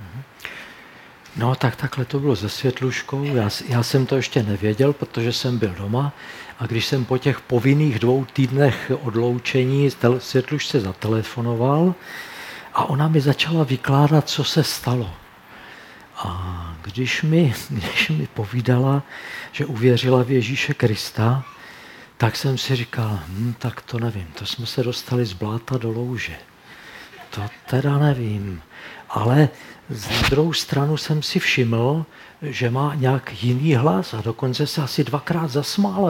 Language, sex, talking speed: Czech, male, 135 wpm